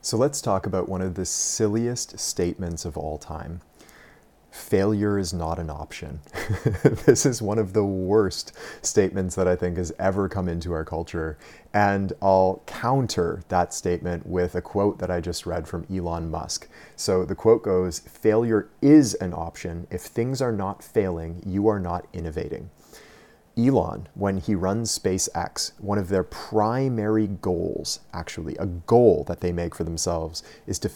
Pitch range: 90-110 Hz